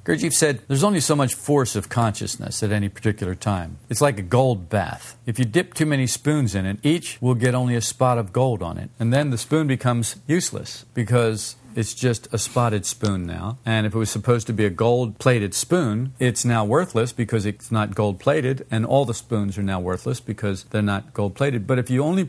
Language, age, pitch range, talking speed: English, 50-69, 105-140 Hz, 220 wpm